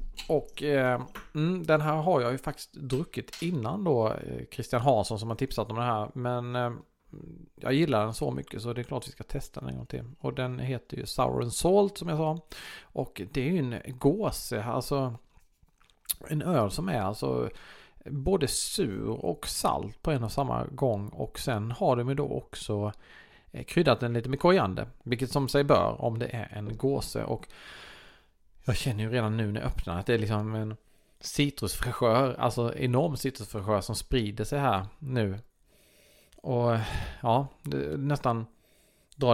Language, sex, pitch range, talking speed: Swedish, male, 110-140 Hz, 180 wpm